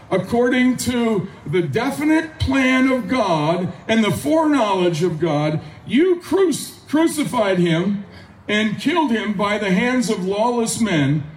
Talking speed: 125 wpm